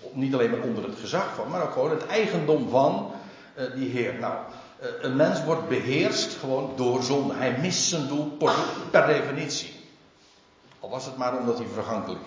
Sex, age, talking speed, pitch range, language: male, 60-79, 190 wpm, 115-155 Hz, Dutch